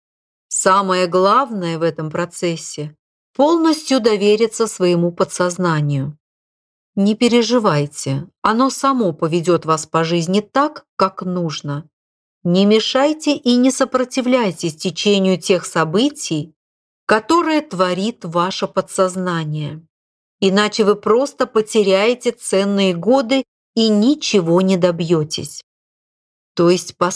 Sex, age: female, 40-59